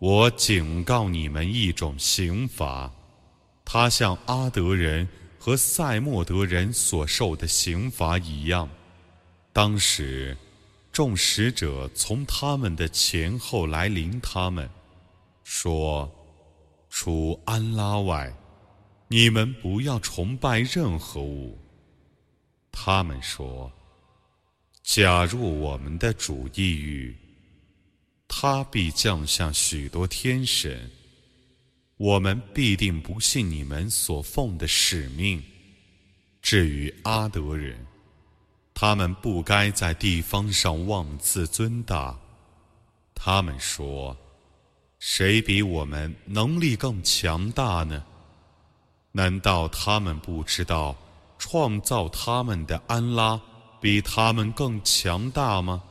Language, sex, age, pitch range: Arabic, male, 30-49, 80-110 Hz